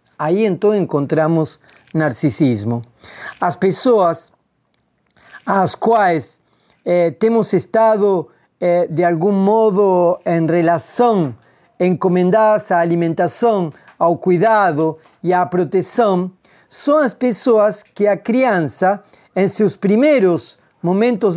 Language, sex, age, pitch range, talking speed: Portuguese, male, 40-59, 165-220 Hz, 100 wpm